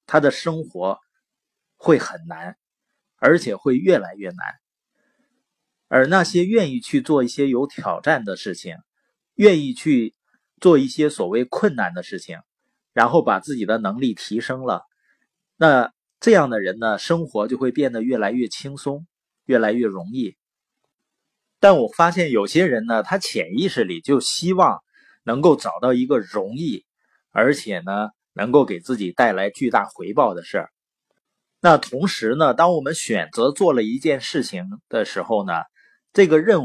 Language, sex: Chinese, male